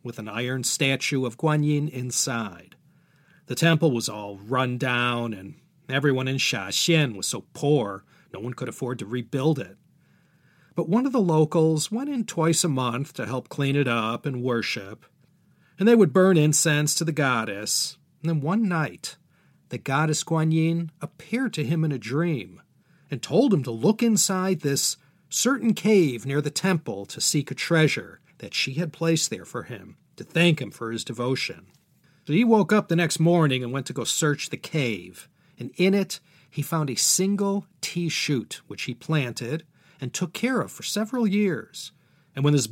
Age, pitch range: 40-59, 135-175 Hz